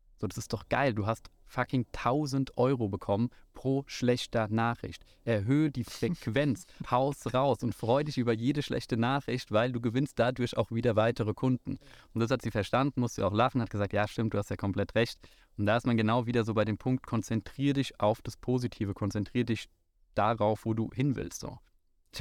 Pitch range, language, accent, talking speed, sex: 105-125 Hz, German, German, 205 wpm, male